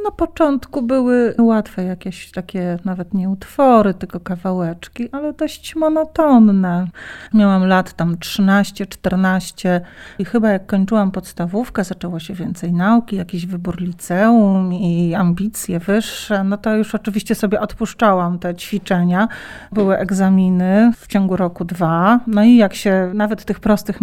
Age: 40-59